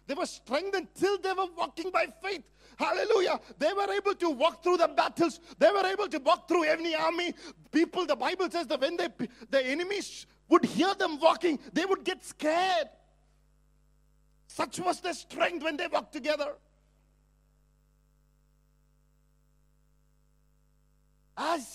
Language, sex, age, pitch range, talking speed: English, male, 50-69, 300-365 Hz, 145 wpm